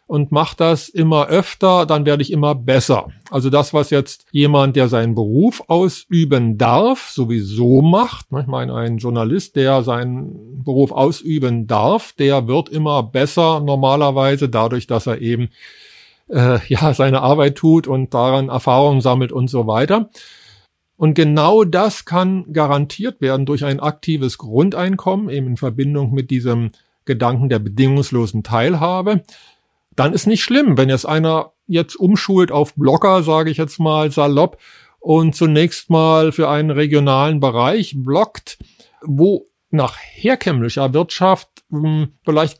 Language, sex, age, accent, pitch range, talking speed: German, male, 50-69, German, 130-165 Hz, 140 wpm